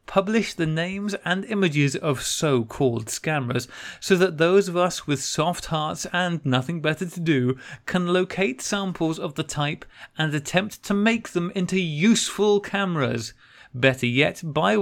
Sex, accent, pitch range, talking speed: male, British, 140-185 Hz, 155 wpm